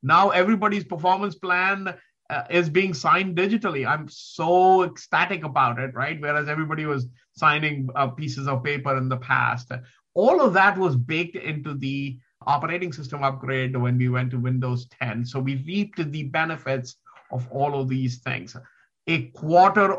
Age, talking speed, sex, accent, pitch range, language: 50-69, 160 wpm, male, Indian, 130-170 Hz, English